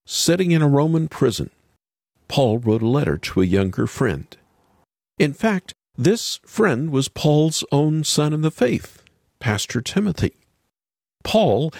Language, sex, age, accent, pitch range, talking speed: English, male, 50-69, American, 105-165 Hz, 135 wpm